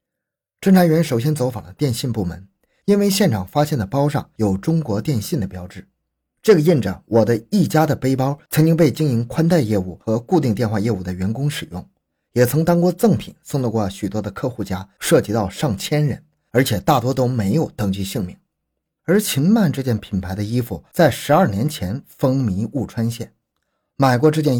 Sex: male